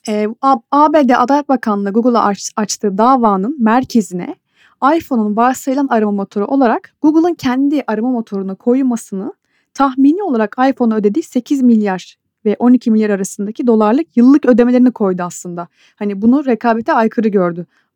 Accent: native